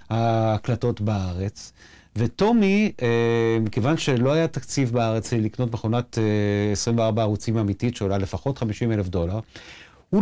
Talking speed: 110 wpm